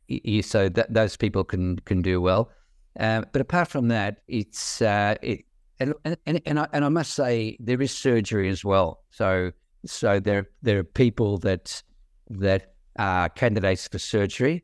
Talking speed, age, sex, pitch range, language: 170 wpm, 50-69, male, 90-110 Hz, English